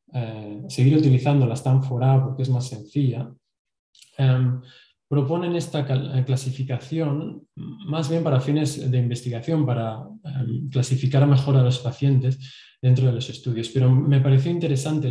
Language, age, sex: Spanish, 20-39, male